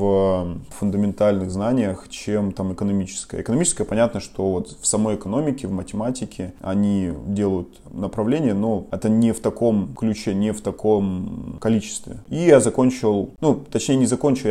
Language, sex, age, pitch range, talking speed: Russian, male, 20-39, 100-125 Hz, 145 wpm